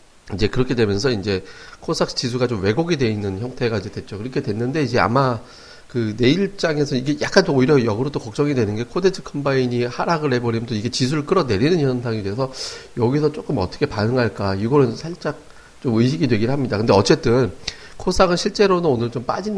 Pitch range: 110-150 Hz